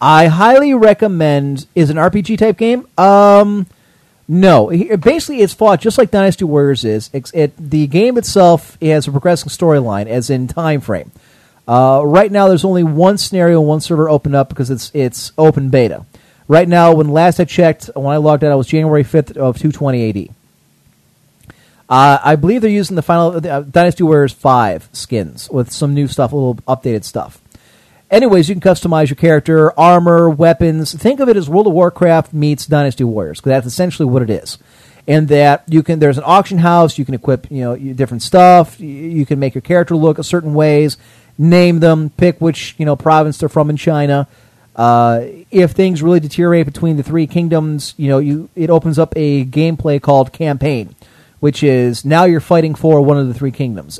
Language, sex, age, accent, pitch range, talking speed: English, male, 40-59, American, 135-170 Hz, 195 wpm